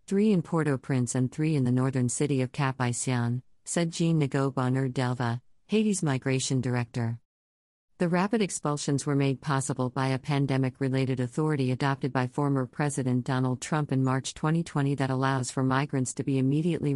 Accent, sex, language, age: American, female, English, 50-69